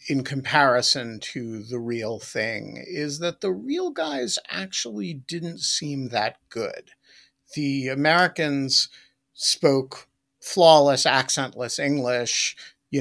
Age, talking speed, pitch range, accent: 50-69, 105 wpm, 125-160 Hz, American